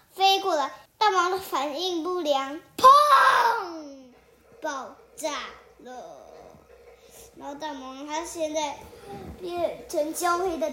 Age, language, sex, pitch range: 20-39, Chinese, male, 300-365 Hz